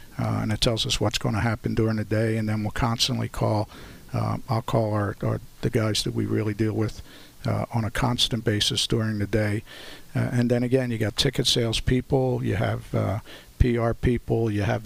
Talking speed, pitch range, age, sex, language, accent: 215 wpm, 115-125 Hz, 50-69, male, English, American